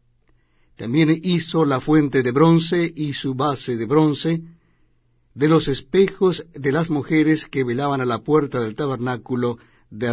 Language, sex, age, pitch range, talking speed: Spanish, male, 60-79, 115-165 Hz, 150 wpm